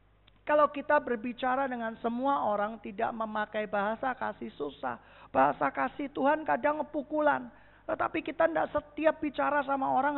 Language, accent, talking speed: Indonesian, native, 135 wpm